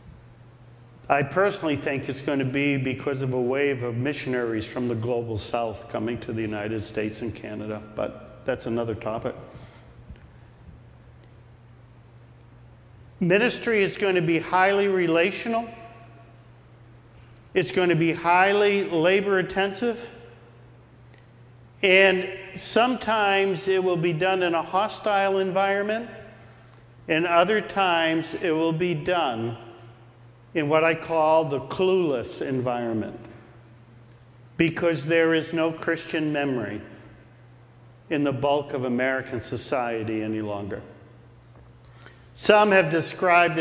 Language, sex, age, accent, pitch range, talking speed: English, male, 50-69, American, 120-175 Hz, 115 wpm